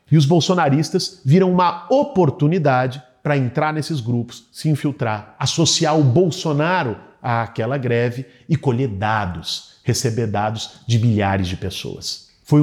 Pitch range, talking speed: 110-155 Hz, 130 wpm